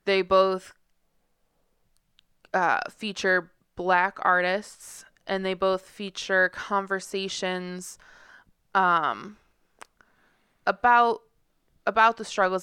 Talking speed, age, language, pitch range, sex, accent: 75 wpm, 20-39, English, 175-195 Hz, female, American